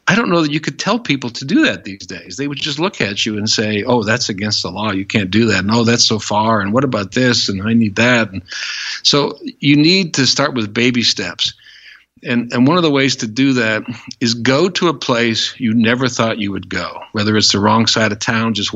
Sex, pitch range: male, 105-130 Hz